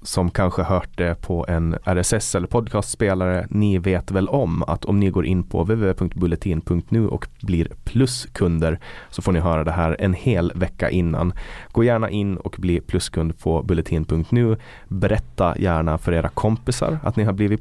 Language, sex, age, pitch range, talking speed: Swedish, male, 30-49, 80-100 Hz, 170 wpm